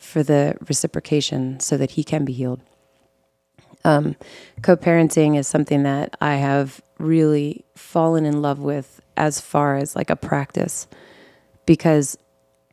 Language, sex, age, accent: English, female, 30-49, American